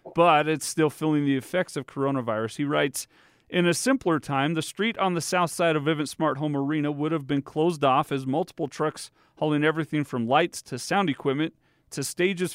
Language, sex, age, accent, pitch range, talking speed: English, male, 40-59, American, 135-175 Hz, 200 wpm